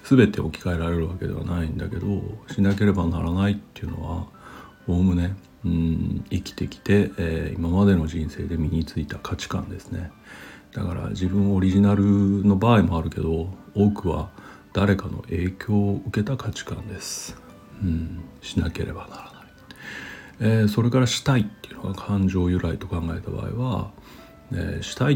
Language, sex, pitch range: Japanese, male, 85-105 Hz